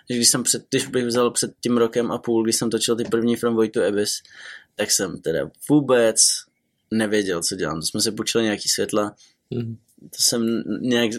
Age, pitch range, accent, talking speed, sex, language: 20-39, 110-125 Hz, native, 190 wpm, male, Czech